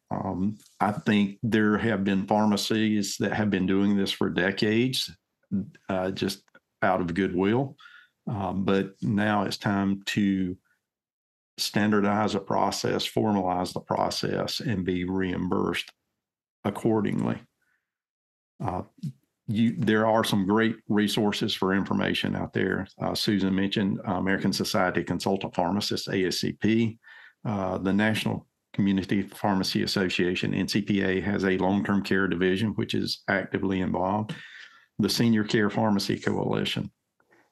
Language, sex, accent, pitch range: English, male, American, 95-110 Hz